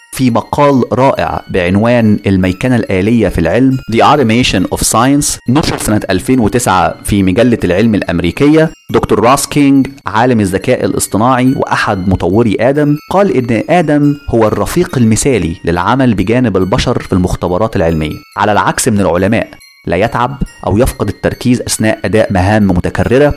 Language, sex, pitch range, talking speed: Arabic, male, 95-140 Hz, 135 wpm